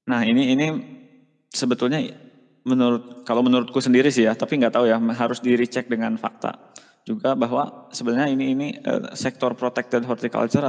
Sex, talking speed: male, 150 wpm